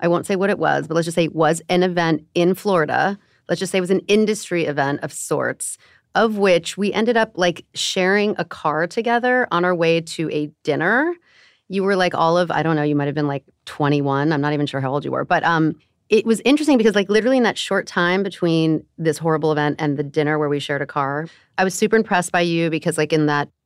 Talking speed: 250 wpm